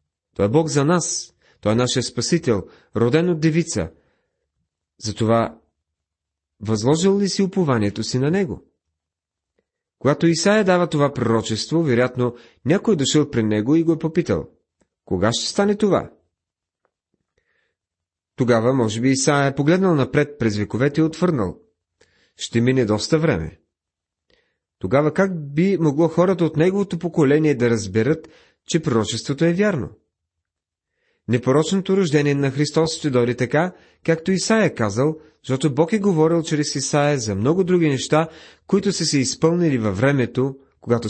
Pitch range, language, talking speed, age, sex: 110-160 Hz, Bulgarian, 140 wpm, 40-59, male